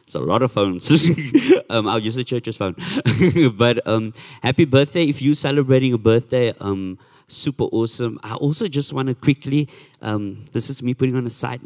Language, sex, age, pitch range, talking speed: English, male, 50-69, 100-135 Hz, 190 wpm